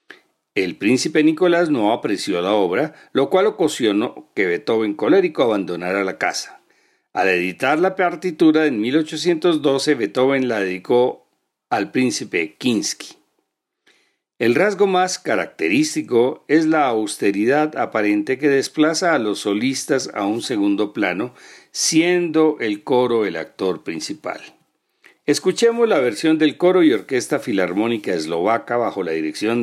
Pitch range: 115-175 Hz